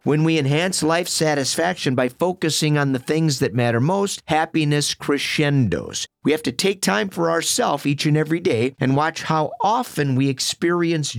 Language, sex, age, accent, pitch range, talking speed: English, male, 50-69, American, 120-155 Hz, 170 wpm